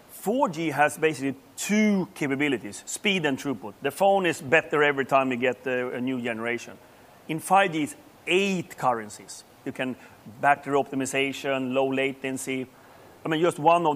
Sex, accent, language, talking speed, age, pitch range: male, Swedish, English, 150 wpm, 30-49, 135-175 Hz